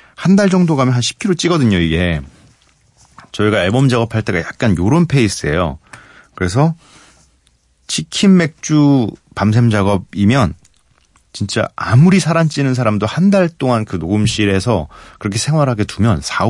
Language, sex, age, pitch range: Korean, male, 40-59, 85-125 Hz